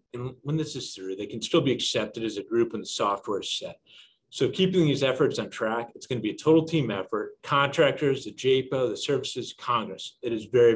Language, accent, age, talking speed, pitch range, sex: English, American, 40-59, 230 wpm, 130-170 Hz, male